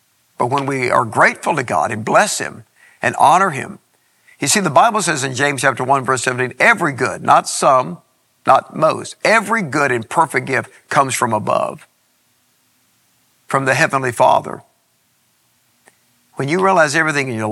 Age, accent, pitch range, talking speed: 50-69, American, 135-180 Hz, 165 wpm